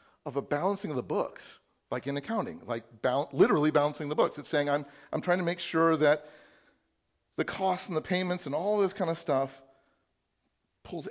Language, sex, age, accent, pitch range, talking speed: English, male, 50-69, American, 135-180 Hz, 195 wpm